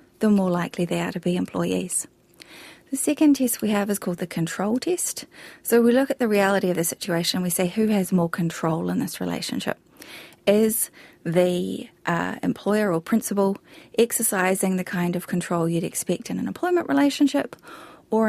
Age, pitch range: 30-49, 180-225 Hz